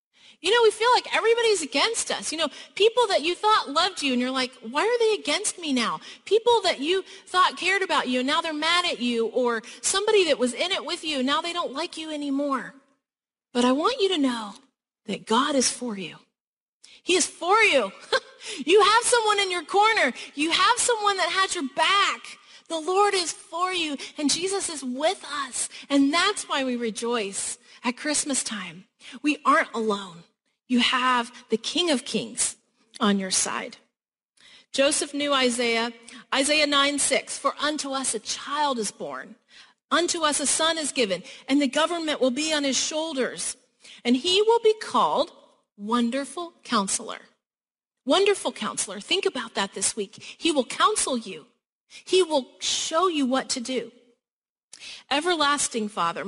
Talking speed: 175 wpm